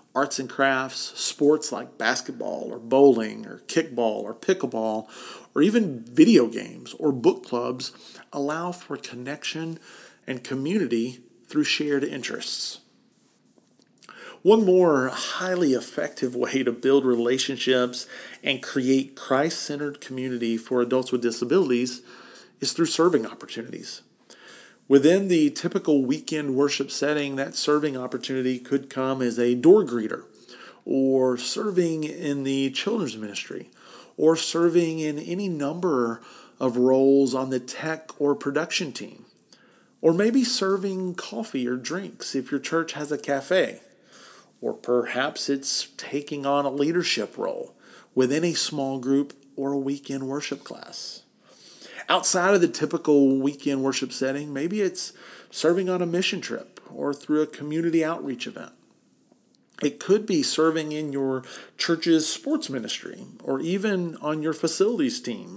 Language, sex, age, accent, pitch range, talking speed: English, male, 40-59, American, 130-170 Hz, 135 wpm